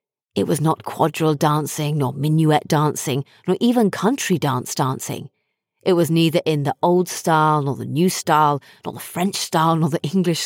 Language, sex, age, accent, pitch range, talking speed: English, female, 30-49, British, 145-175 Hz, 180 wpm